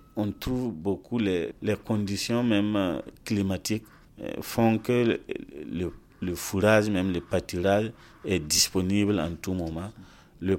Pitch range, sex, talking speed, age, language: 85-105 Hz, male, 130 wpm, 40-59, English